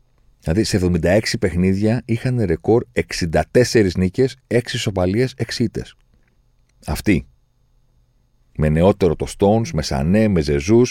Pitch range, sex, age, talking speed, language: 85-115 Hz, male, 40-59, 115 wpm, Greek